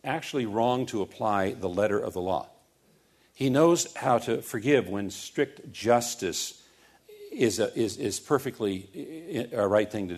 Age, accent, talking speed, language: 50-69, American, 155 wpm, English